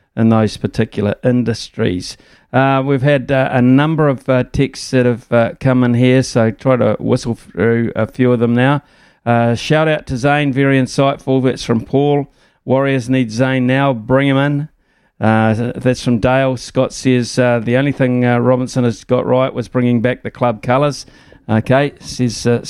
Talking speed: 185 wpm